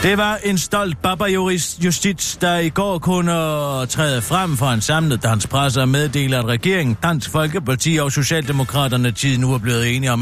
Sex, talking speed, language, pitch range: male, 175 wpm, Danish, 125-175 Hz